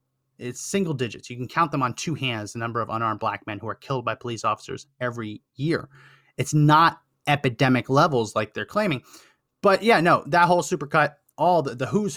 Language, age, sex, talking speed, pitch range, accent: English, 30-49, male, 200 wpm, 125-165 Hz, American